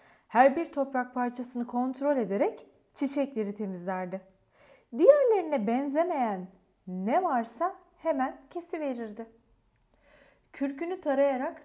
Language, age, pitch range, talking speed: Turkish, 40-59, 200-285 Hz, 90 wpm